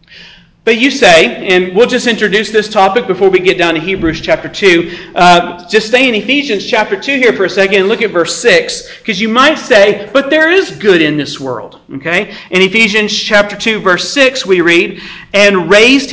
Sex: male